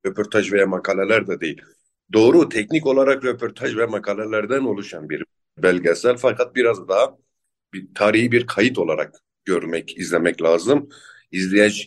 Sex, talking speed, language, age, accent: male, 130 wpm, Turkish, 50-69, native